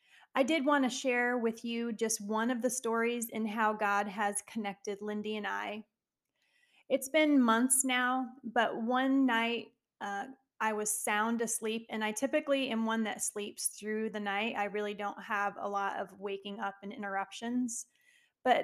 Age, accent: 30-49, American